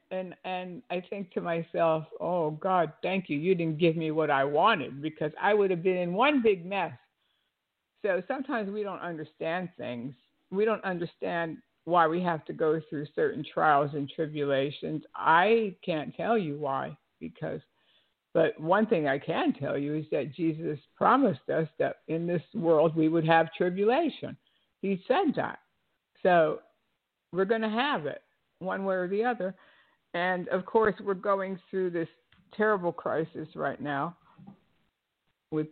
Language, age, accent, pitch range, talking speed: English, 60-79, American, 155-195 Hz, 165 wpm